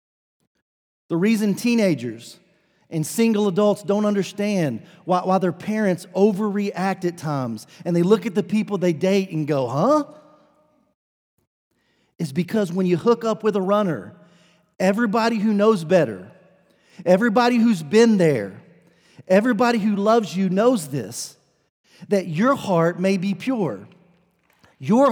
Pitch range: 155-205 Hz